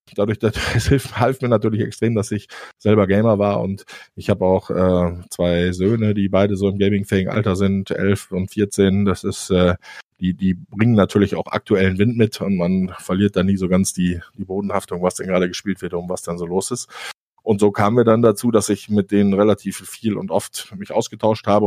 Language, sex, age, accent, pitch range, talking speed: German, male, 20-39, German, 95-105 Hz, 215 wpm